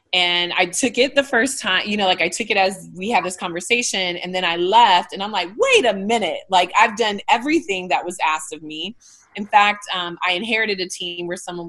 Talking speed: 235 wpm